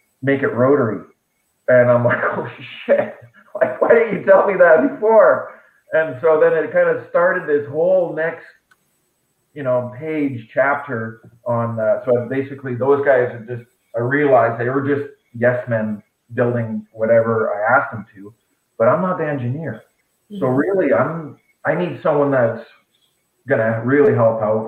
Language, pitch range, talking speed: English, 110-140 Hz, 165 wpm